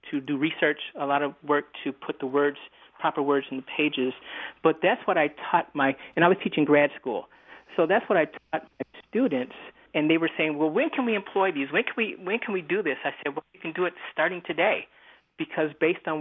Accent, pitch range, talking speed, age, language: American, 145-170 Hz, 240 wpm, 40-59, English